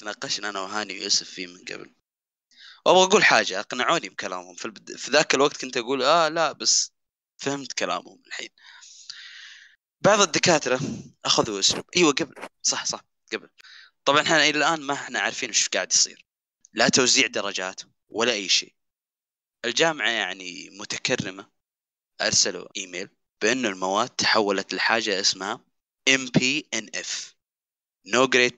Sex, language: male, English